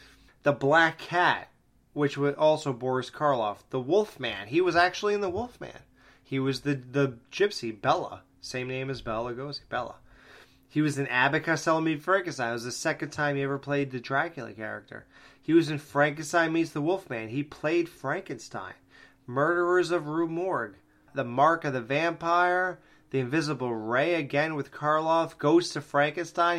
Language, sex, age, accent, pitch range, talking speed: English, male, 20-39, American, 125-160 Hz, 165 wpm